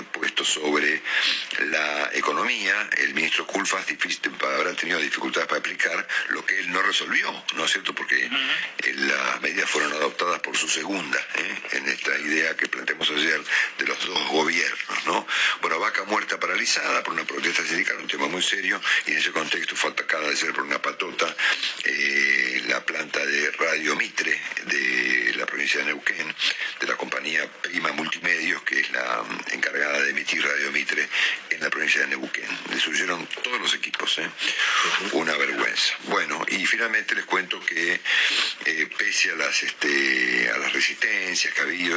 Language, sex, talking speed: Spanish, male, 165 wpm